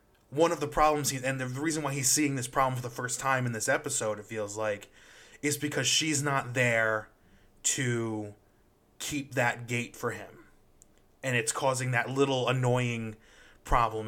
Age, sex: 20-39, male